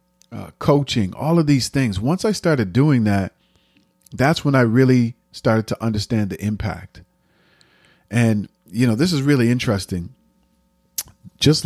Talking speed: 145 wpm